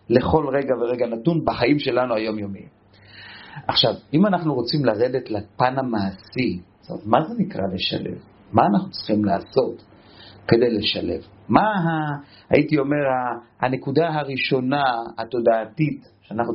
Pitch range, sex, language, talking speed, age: 105-145 Hz, male, Hebrew, 120 wpm, 40-59